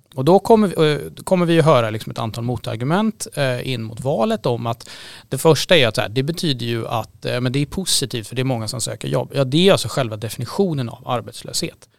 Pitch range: 115-150 Hz